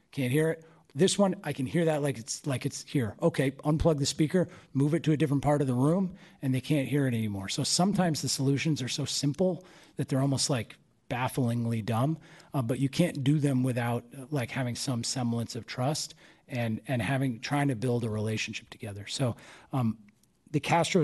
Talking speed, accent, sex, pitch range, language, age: 210 wpm, American, male, 115-145 Hz, English, 40-59